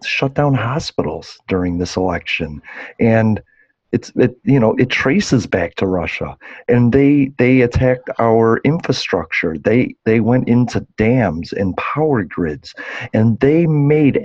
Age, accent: 40-59, American